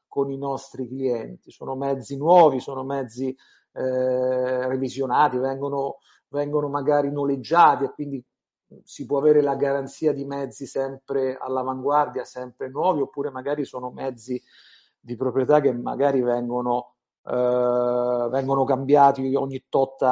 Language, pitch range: Italian, 125-140 Hz